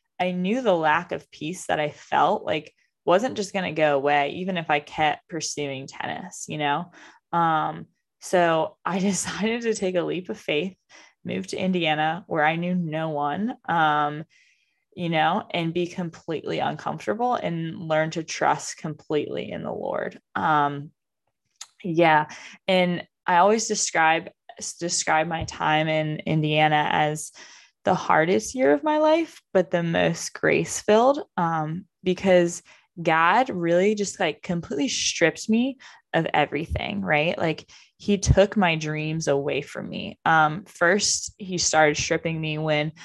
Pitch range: 150-180 Hz